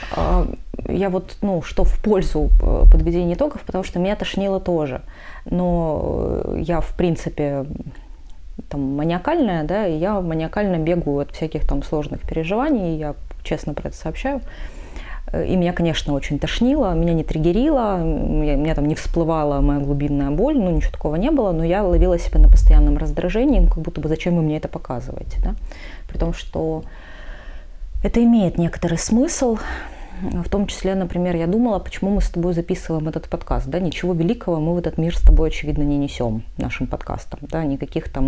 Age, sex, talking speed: 20-39, female, 170 wpm